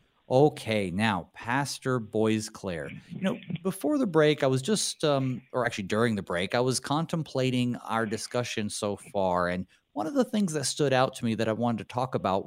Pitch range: 110-155 Hz